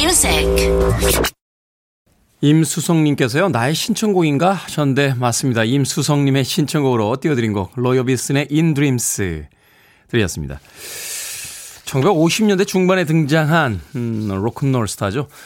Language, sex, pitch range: Korean, male, 115-170 Hz